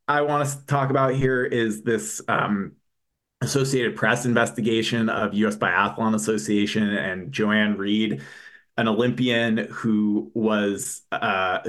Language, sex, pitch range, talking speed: English, male, 105-130 Hz, 120 wpm